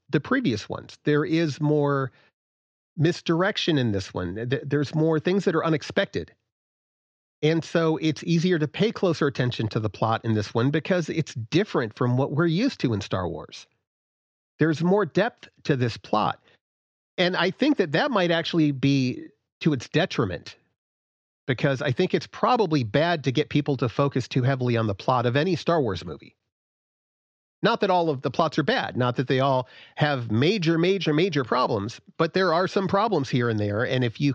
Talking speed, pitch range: 185 wpm, 125-170 Hz